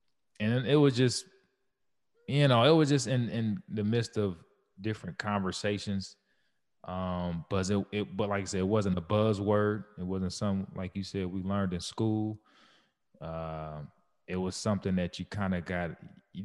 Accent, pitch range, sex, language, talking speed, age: American, 85-105 Hz, male, English, 175 wpm, 20-39